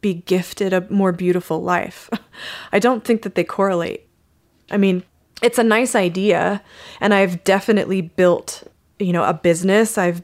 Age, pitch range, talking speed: 20-39, 180-215 Hz, 160 wpm